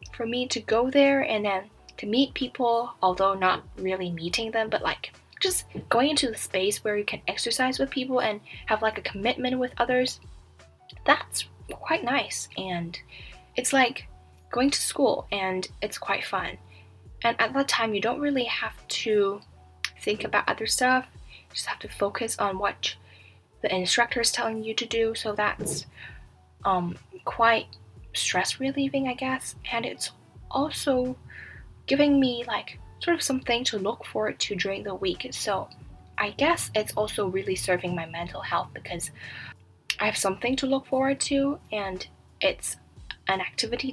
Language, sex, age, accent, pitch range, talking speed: English, female, 10-29, American, 190-255 Hz, 165 wpm